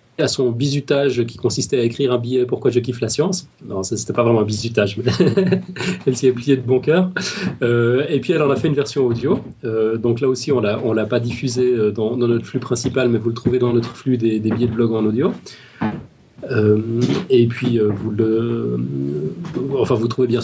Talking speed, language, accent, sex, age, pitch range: 225 wpm, French, French, male, 30-49, 115-140 Hz